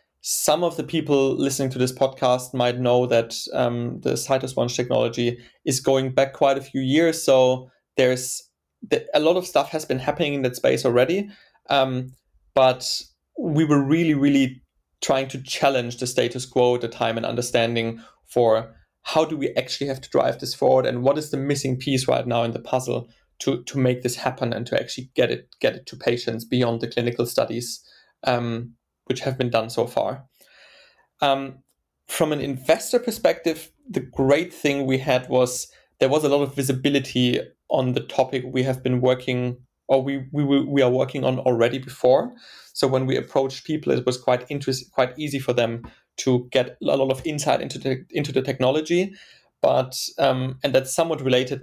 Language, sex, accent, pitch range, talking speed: English, male, German, 120-140 Hz, 190 wpm